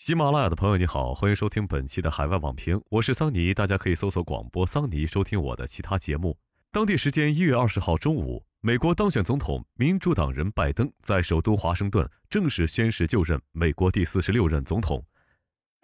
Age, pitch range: 20-39, 80-125 Hz